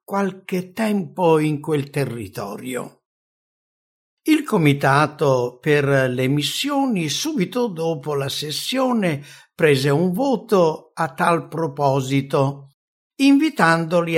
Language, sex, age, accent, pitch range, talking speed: English, male, 60-79, Italian, 130-175 Hz, 90 wpm